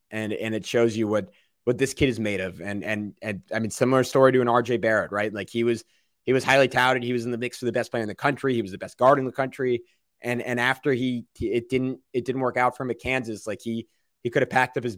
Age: 20-39